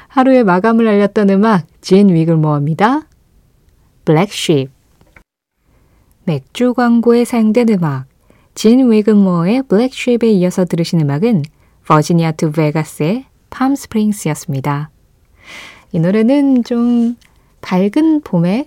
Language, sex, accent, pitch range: Korean, female, native, 165-240 Hz